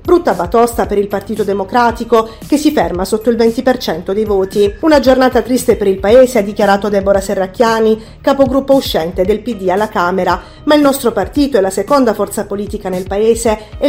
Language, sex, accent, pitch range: Italian, female, native, 195-250 Hz